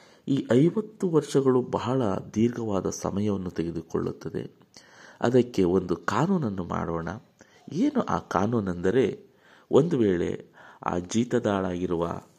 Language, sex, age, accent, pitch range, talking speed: Kannada, male, 50-69, native, 90-120 Hz, 85 wpm